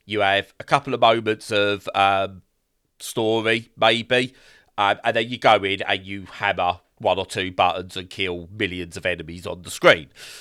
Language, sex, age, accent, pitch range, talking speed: English, male, 30-49, British, 100-130 Hz, 180 wpm